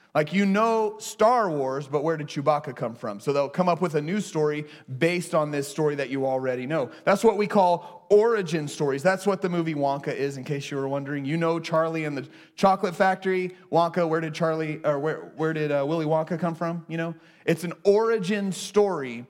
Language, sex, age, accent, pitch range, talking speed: English, male, 30-49, American, 150-195 Hz, 220 wpm